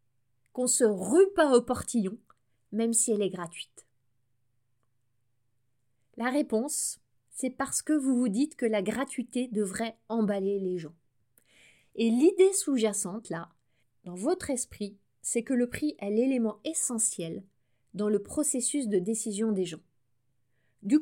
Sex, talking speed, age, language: female, 135 wpm, 20-39, French